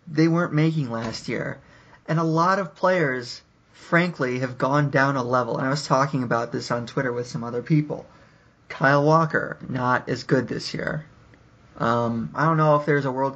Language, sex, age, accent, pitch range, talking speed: English, male, 30-49, American, 130-165 Hz, 195 wpm